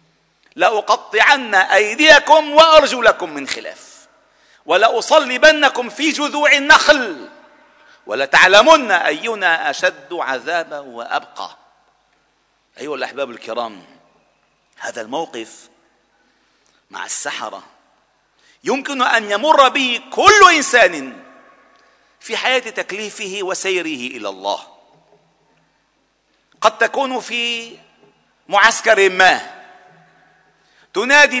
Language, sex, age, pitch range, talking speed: Arabic, male, 50-69, 210-290 Hz, 75 wpm